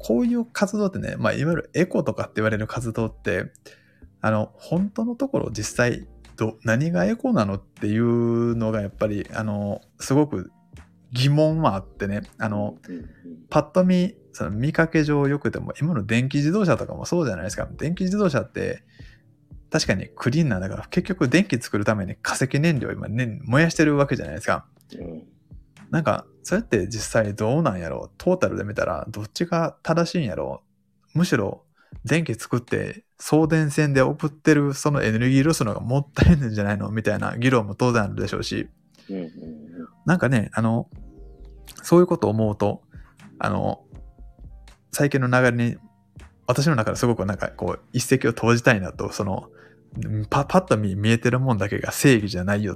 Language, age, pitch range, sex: Japanese, 20-39, 105-150 Hz, male